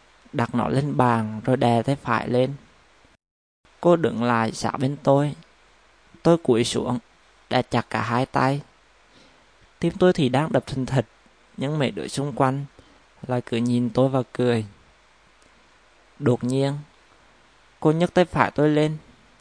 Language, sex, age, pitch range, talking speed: Vietnamese, male, 20-39, 115-145 Hz, 150 wpm